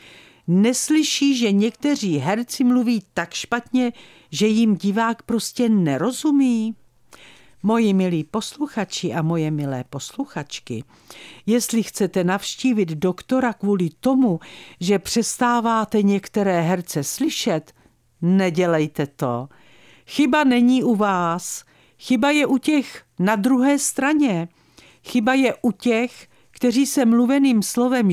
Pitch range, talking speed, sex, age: 165-240 Hz, 110 wpm, female, 50-69